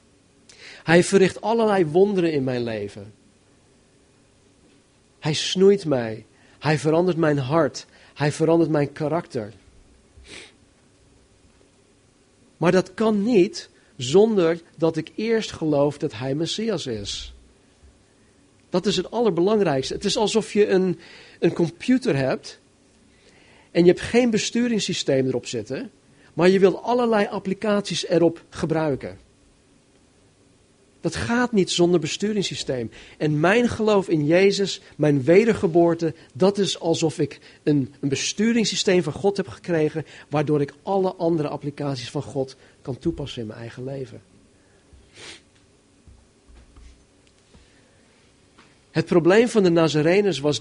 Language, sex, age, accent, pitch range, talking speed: Dutch, male, 40-59, Dutch, 130-185 Hz, 115 wpm